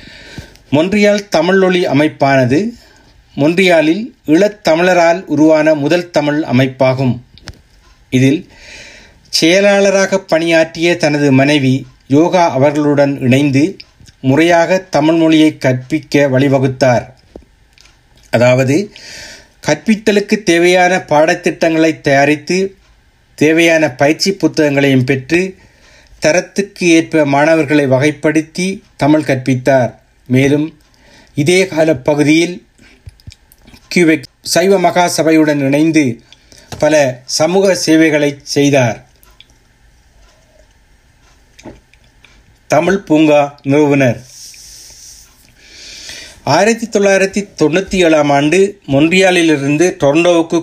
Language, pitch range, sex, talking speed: Tamil, 140-175 Hz, male, 65 wpm